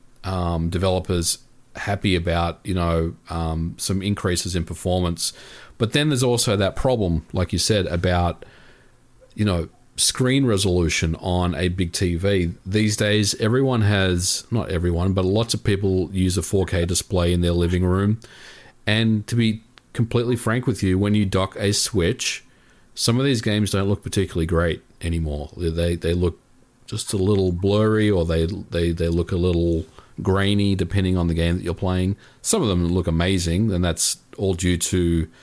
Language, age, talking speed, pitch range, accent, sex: English, 40-59, 170 wpm, 85-105 Hz, Australian, male